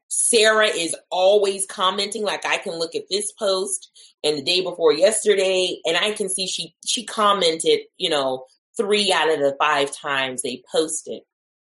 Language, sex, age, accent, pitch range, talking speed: English, female, 30-49, American, 150-205 Hz, 170 wpm